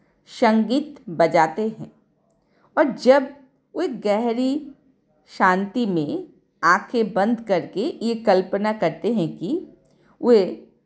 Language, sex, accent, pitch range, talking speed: Hindi, female, native, 195-280 Hz, 100 wpm